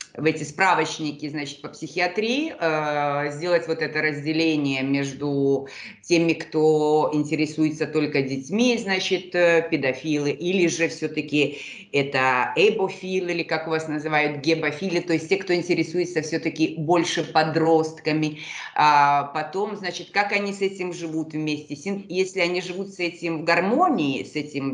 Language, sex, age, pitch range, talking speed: Russian, female, 30-49, 140-175 Hz, 140 wpm